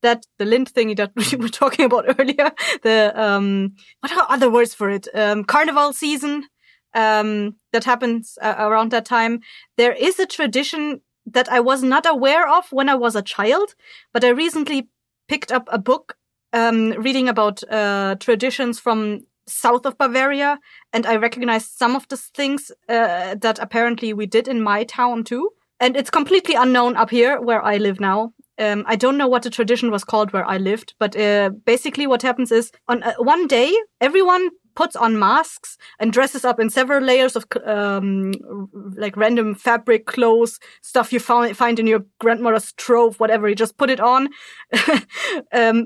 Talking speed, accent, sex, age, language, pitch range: 180 wpm, German, female, 20-39, English, 225-280 Hz